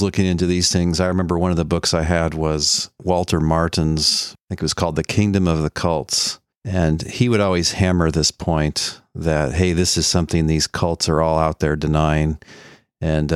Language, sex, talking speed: English, male, 200 wpm